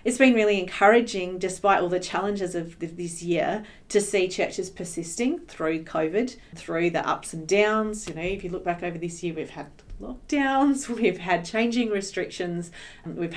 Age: 40-59